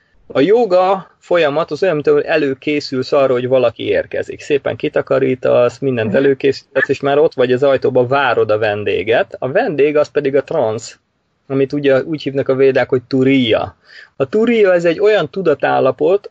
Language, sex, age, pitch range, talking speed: Hungarian, male, 30-49, 130-195 Hz, 170 wpm